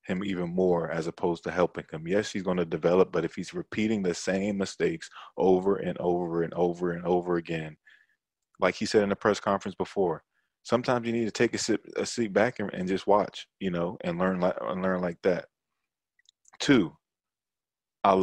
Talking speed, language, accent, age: 200 wpm, English, American, 20-39